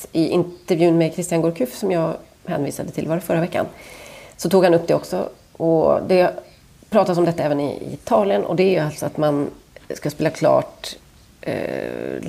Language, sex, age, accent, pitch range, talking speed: Swedish, female, 30-49, native, 155-185 Hz, 175 wpm